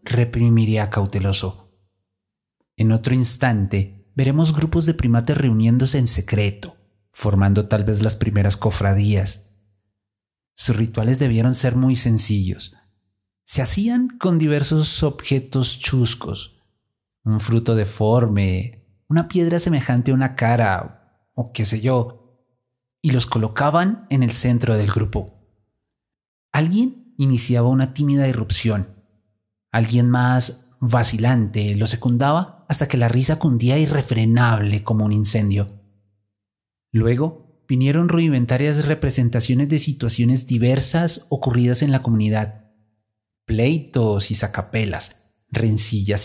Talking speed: 110 wpm